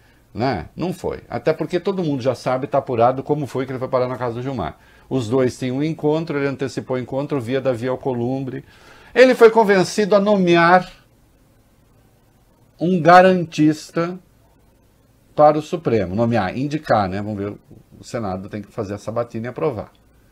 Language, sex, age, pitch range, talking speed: English, male, 50-69, 130-210 Hz, 175 wpm